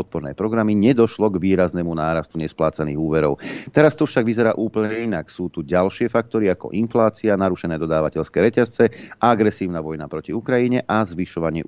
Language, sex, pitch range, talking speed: Slovak, male, 80-110 Hz, 150 wpm